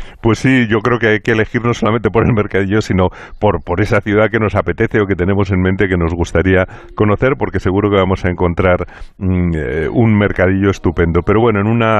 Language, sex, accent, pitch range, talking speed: Spanish, male, Spanish, 95-110 Hz, 220 wpm